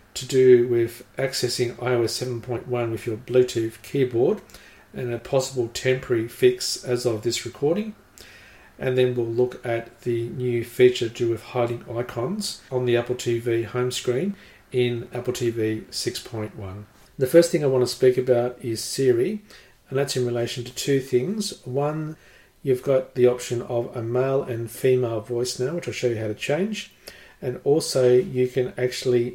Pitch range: 120-130 Hz